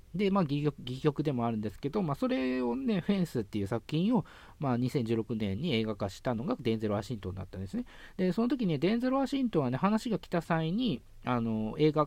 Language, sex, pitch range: Japanese, male, 110-170 Hz